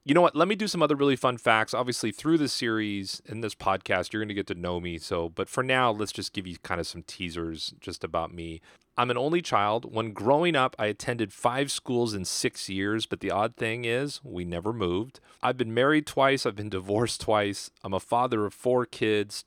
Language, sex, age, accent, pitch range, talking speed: English, male, 40-59, American, 90-130 Hz, 235 wpm